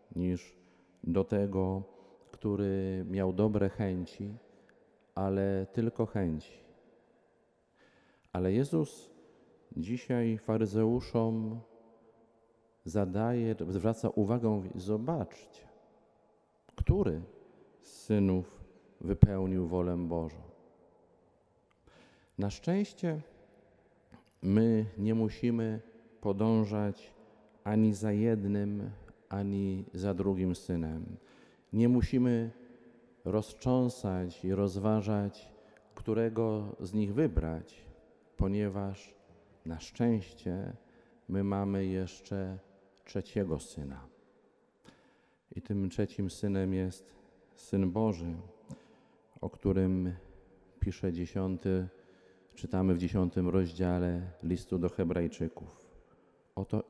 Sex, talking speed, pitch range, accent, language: male, 75 wpm, 95-110 Hz, native, Polish